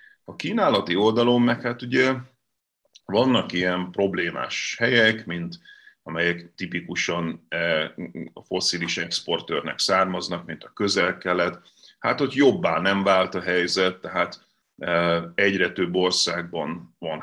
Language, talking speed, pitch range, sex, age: Hungarian, 110 wpm, 85-100 Hz, male, 30-49